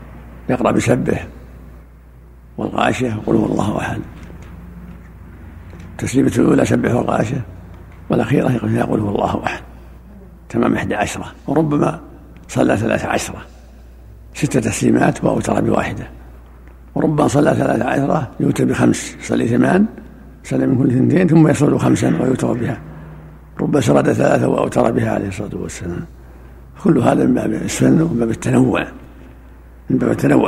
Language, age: Arabic, 60-79